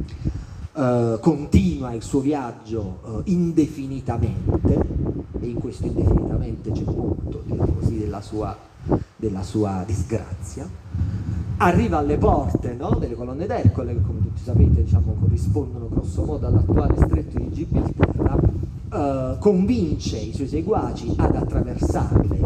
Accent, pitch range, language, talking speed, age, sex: native, 95-140 Hz, Italian, 120 wpm, 40-59, male